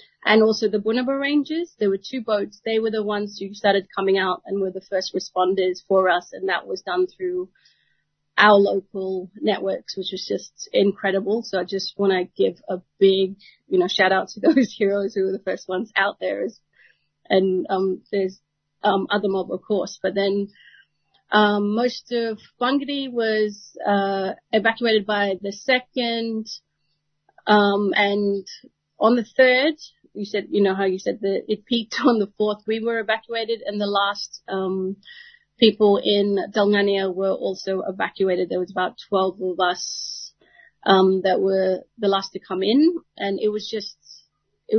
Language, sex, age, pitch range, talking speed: English, female, 30-49, 190-225 Hz, 175 wpm